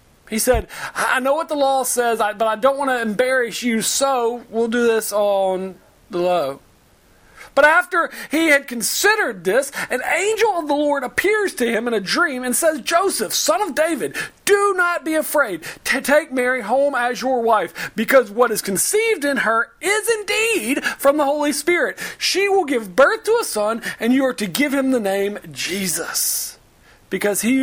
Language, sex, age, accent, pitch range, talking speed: English, male, 40-59, American, 205-290 Hz, 185 wpm